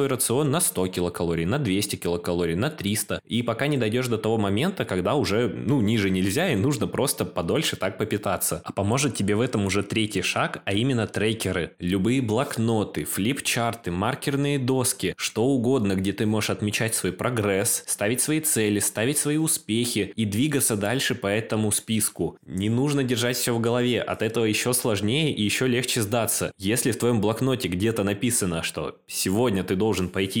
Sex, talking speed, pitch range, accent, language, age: male, 175 wpm, 100-125 Hz, native, Russian, 20-39